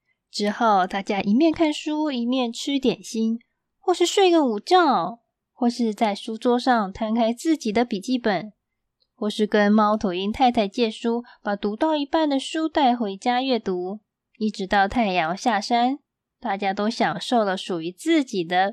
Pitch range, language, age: 200-255 Hz, Chinese, 20-39